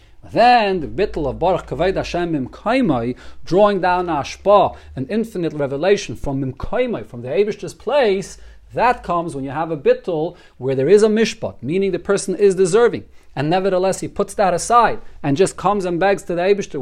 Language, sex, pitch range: English, male, 145-200 Hz